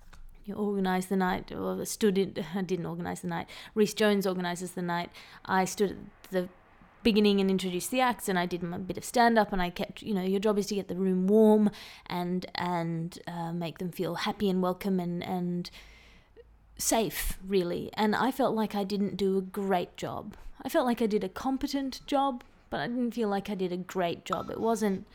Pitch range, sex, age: 180-210 Hz, female, 20-39